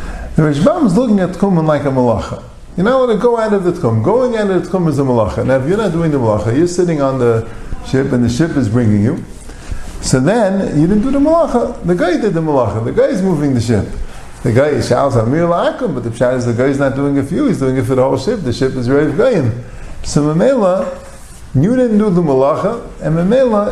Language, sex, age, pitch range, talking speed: English, male, 50-69, 135-200 Hz, 250 wpm